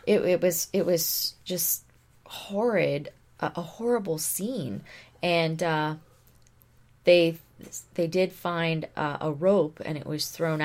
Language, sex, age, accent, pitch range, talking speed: English, female, 20-39, American, 130-155 Hz, 135 wpm